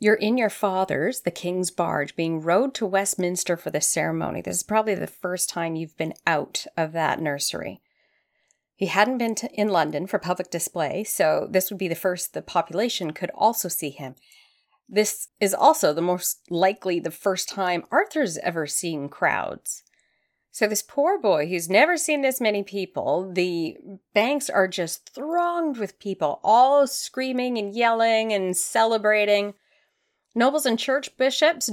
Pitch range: 180-240 Hz